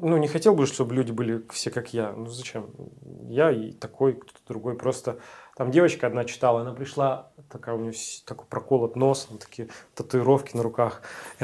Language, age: Russian, 30-49